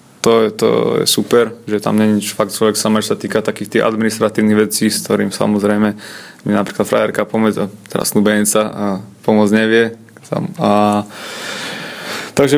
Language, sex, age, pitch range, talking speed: Slovak, male, 20-39, 105-115 Hz, 150 wpm